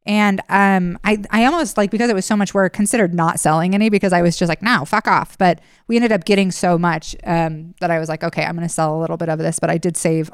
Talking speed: 290 wpm